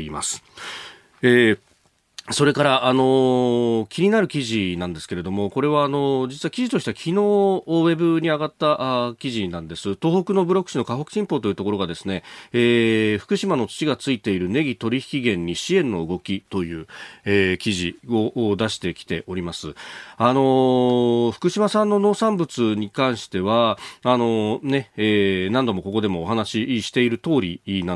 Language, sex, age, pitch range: Japanese, male, 40-59, 100-135 Hz